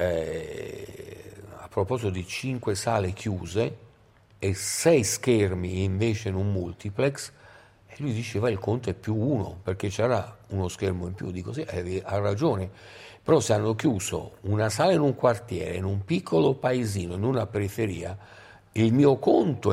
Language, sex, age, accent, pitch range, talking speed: Italian, male, 50-69, native, 95-125 Hz, 160 wpm